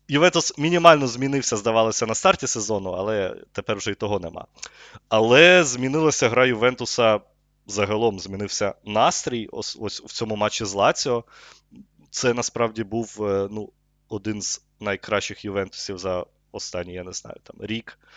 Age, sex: 20-39, male